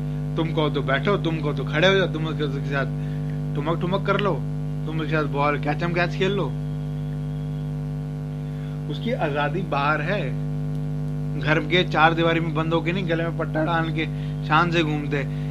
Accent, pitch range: Indian, 145-165 Hz